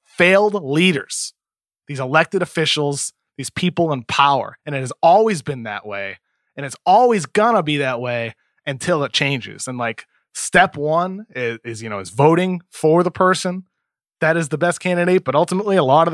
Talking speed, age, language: 180 wpm, 20-39, English